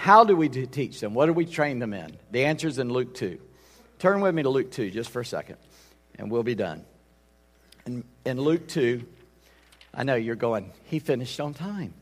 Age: 50-69